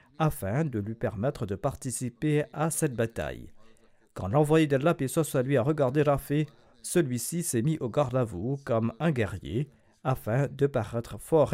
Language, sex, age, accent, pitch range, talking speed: French, male, 50-69, French, 110-150 Hz, 165 wpm